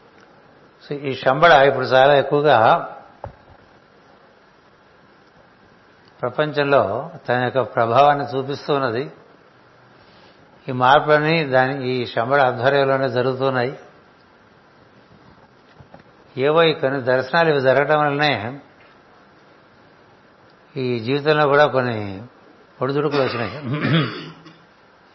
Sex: male